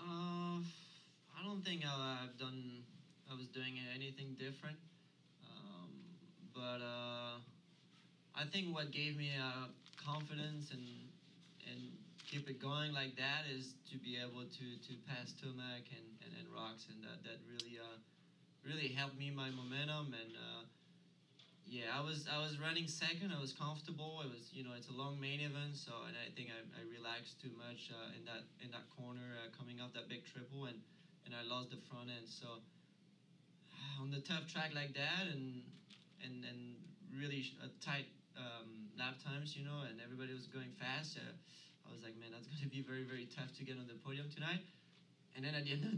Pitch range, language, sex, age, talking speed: 125-150 Hz, English, male, 20-39, 190 wpm